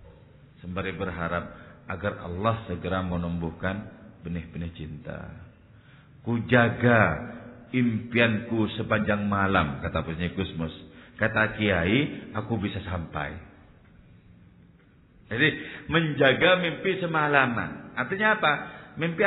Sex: male